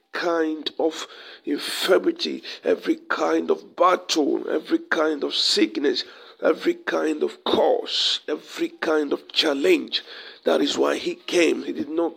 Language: English